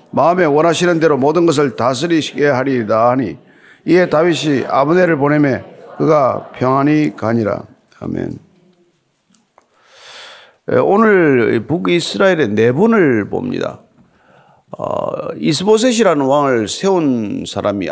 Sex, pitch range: male, 125-185 Hz